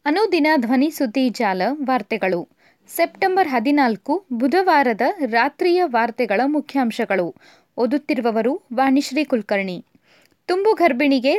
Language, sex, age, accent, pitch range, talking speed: Kannada, female, 20-39, native, 245-330 Hz, 80 wpm